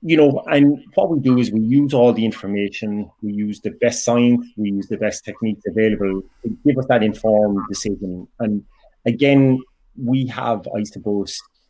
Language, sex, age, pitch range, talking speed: English, male, 30-49, 100-115 Hz, 180 wpm